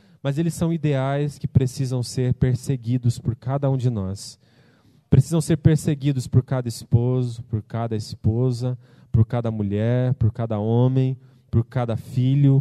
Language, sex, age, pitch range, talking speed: Portuguese, male, 20-39, 125-170 Hz, 150 wpm